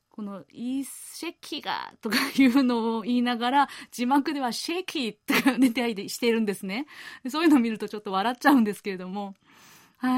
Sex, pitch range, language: female, 235-330 Hz, Japanese